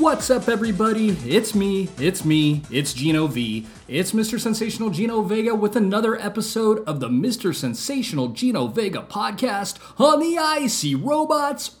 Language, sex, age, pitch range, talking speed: English, male, 30-49, 130-200 Hz, 145 wpm